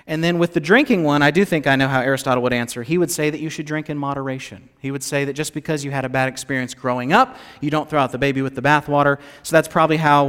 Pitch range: 130-165 Hz